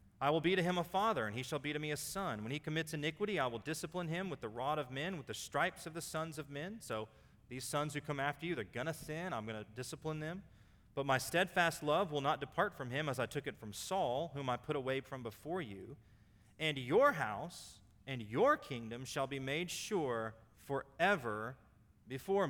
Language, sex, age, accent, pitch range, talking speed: English, male, 30-49, American, 105-155 Hz, 230 wpm